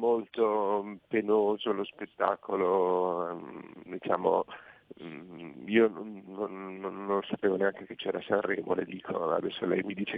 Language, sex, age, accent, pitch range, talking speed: Italian, male, 50-69, native, 105-120 Hz, 110 wpm